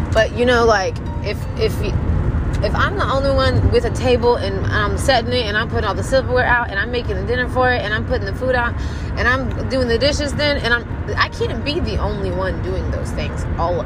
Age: 20-39